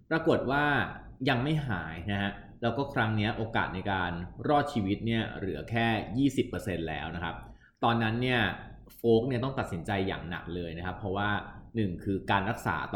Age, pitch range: 20-39, 90-120 Hz